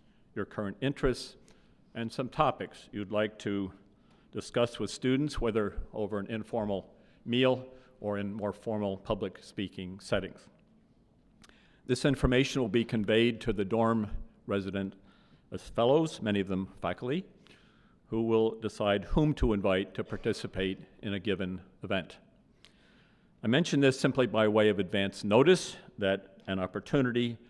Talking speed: 140 wpm